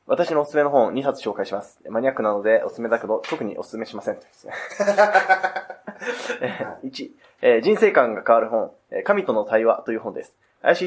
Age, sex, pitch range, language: 20-39, male, 115-150 Hz, Japanese